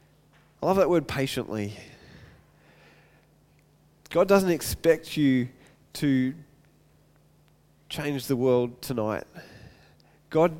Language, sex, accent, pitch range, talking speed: English, male, Australian, 135-165 Hz, 85 wpm